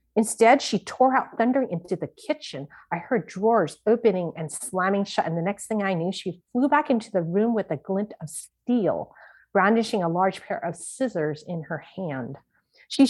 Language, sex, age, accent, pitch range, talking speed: English, female, 40-59, American, 175-235 Hz, 190 wpm